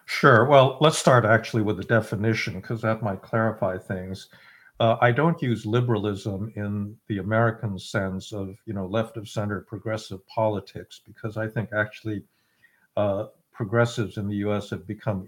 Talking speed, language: 160 wpm, English